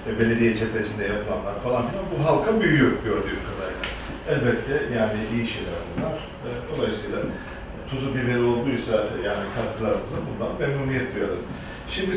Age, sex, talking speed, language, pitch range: 40-59, male, 120 wpm, Turkish, 110-130 Hz